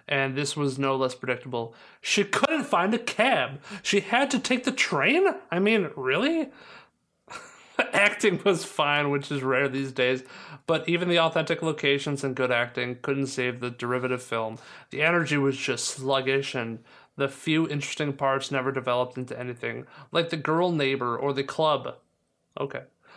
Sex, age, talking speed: male, 30-49, 165 wpm